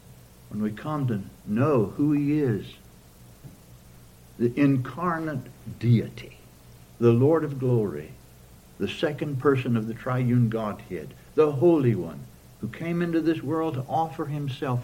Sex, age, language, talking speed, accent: male, 60-79, English, 135 wpm, American